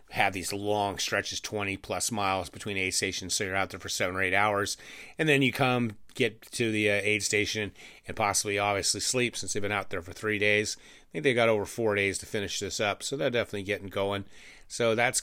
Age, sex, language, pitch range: 30-49, male, English, 95-110 Hz